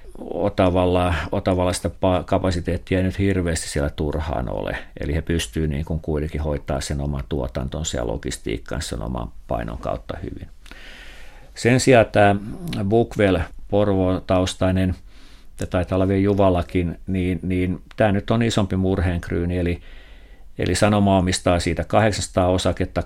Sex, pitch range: male, 80-95 Hz